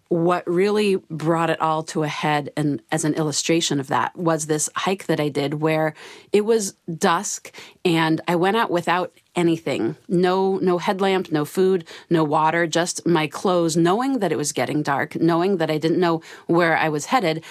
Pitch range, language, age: 155-175 Hz, English, 30-49